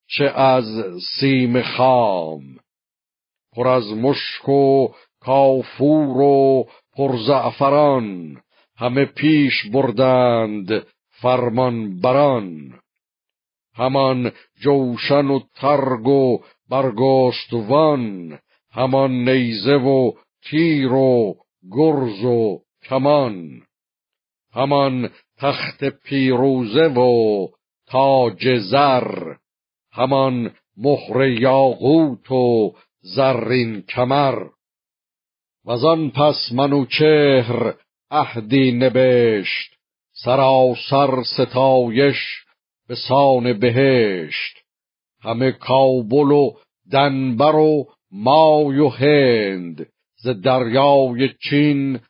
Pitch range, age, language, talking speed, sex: 120-140 Hz, 50-69, Persian, 75 wpm, male